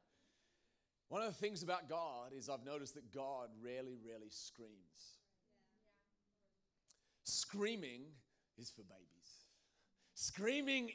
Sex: male